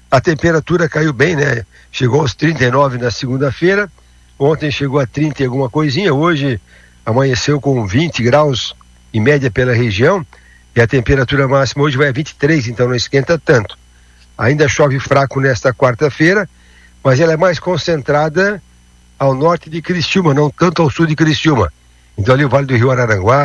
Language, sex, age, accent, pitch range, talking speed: Portuguese, male, 60-79, Brazilian, 115-150 Hz, 165 wpm